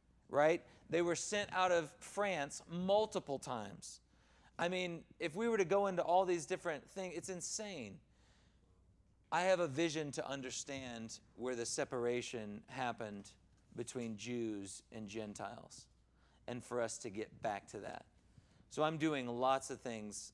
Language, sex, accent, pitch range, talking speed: English, male, American, 110-140 Hz, 150 wpm